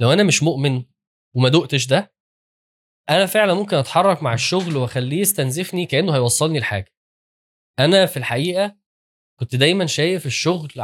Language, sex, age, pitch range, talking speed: Arabic, male, 10-29, 120-170 Hz, 140 wpm